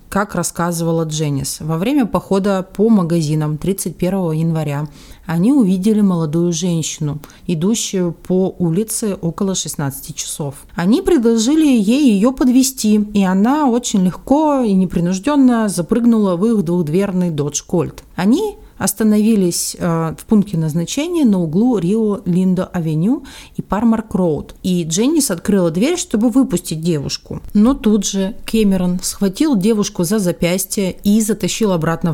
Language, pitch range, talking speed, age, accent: Russian, 165-220 Hz, 120 wpm, 30-49, native